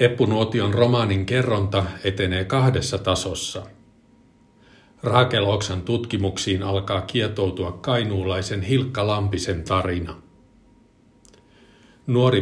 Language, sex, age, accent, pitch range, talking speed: Finnish, male, 50-69, native, 95-115 Hz, 70 wpm